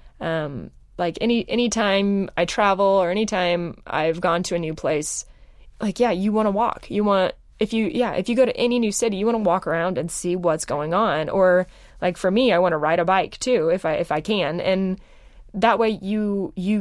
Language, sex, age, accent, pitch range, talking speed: English, female, 20-39, American, 165-210 Hz, 230 wpm